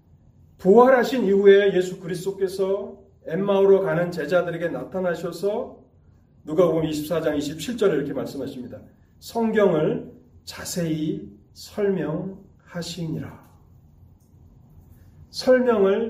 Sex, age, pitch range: male, 40-59, 170-240 Hz